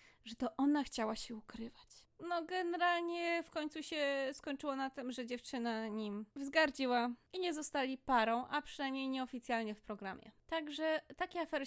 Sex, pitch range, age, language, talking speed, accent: female, 225-280 Hz, 20-39, Polish, 155 wpm, native